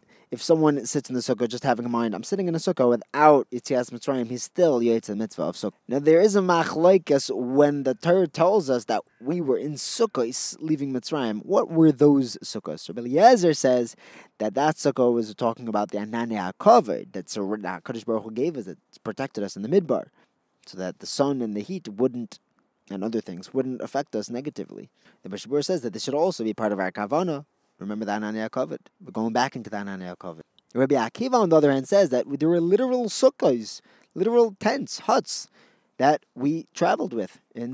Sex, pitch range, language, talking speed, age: male, 115-150 Hz, English, 200 wpm, 20-39